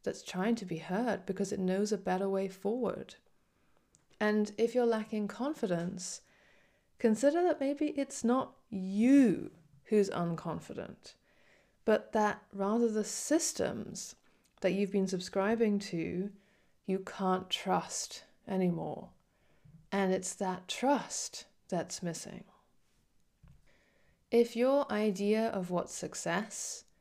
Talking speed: 115 wpm